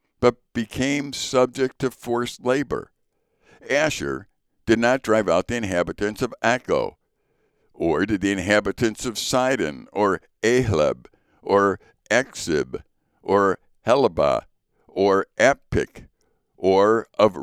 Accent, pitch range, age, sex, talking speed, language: American, 90-115 Hz, 60-79, male, 105 wpm, English